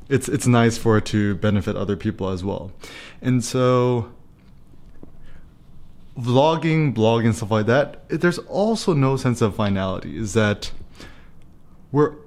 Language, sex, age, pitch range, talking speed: English, male, 20-39, 105-130 Hz, 130 wpm